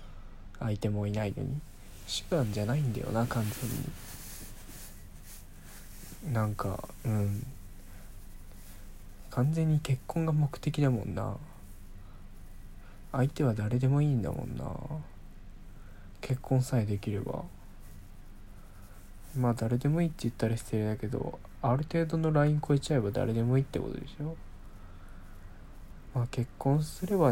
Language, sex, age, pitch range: Japanese, male, 20-39, 95-130 Hz